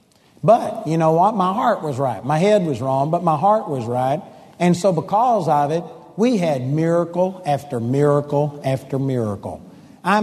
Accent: American